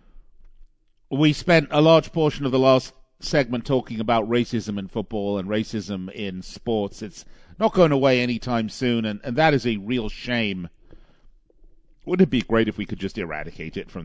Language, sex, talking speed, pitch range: English, male, 185 wpm, 100-160 Hz